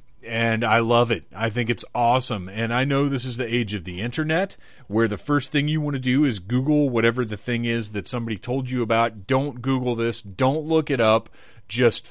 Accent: American